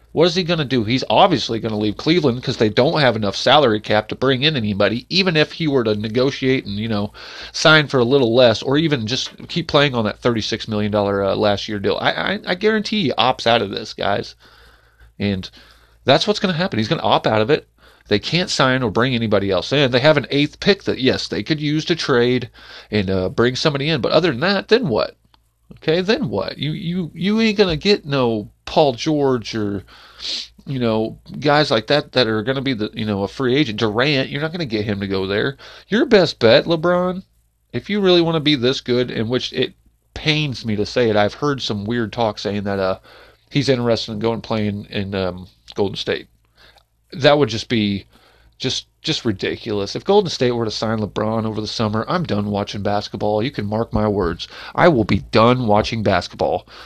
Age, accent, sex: 30-49, American, male